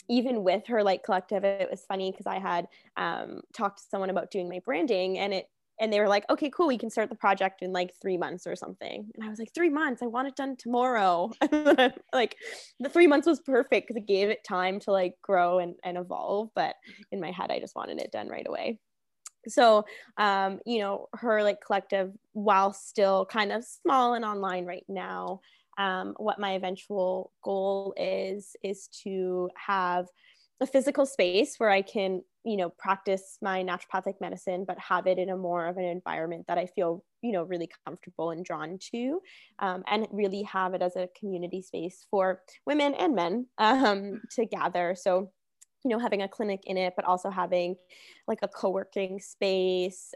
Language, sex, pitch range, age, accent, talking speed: English, female, 180-210 Hz, 10-29, American, 195 wpm